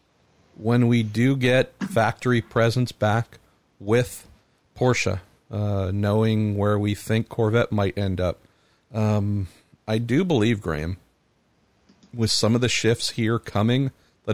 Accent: American